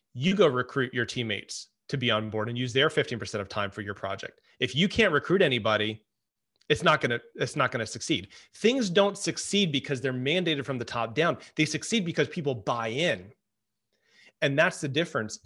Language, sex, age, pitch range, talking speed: English, male, 30-49, 120-155 Hz, 200 wpm